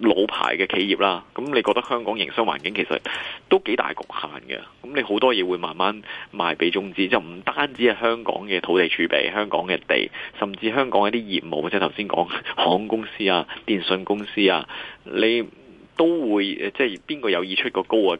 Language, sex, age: Chinese, male, 30-49